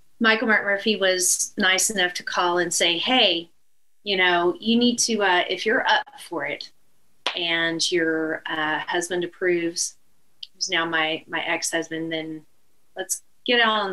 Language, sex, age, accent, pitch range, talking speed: English, female, 30-49, American, 165-205 Hz, 160 wpm